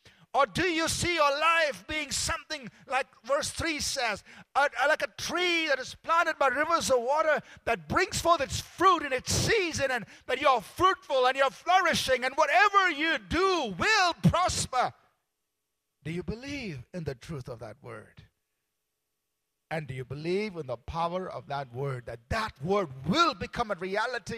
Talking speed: 170 wpm